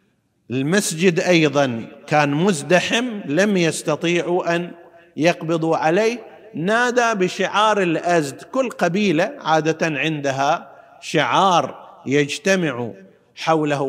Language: Arabic